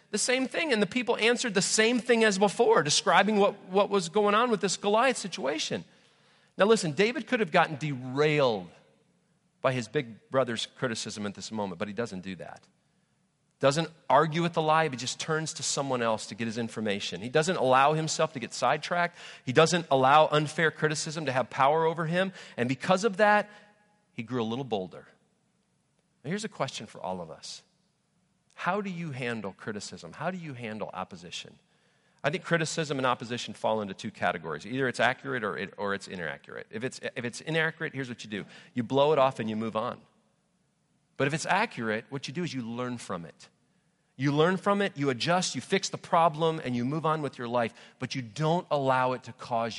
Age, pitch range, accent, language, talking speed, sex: 40-59, 125-185 Hz, American, English, 205 wpm, male